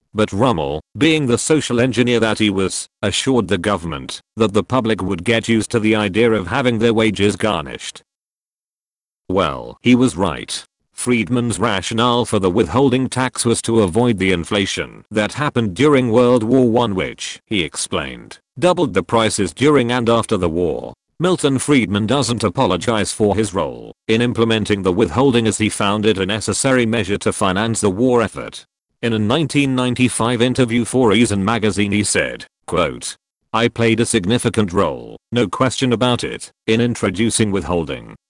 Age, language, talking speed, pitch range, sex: 40-59, English, 160 wpm, 105-125 Hz, male